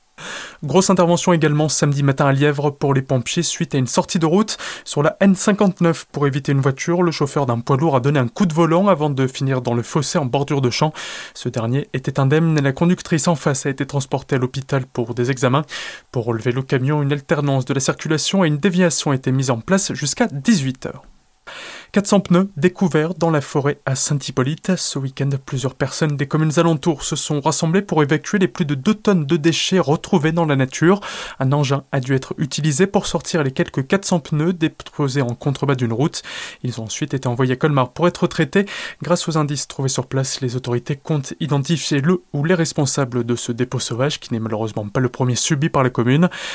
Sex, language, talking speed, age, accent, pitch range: male, French, 215 wpm, 20-39, French, 135-170 Hz